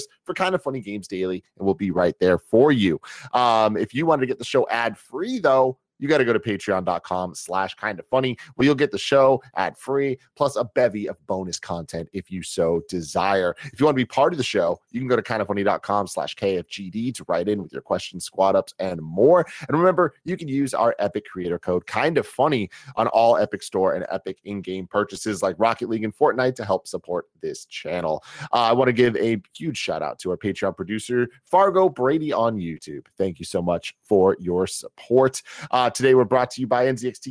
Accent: American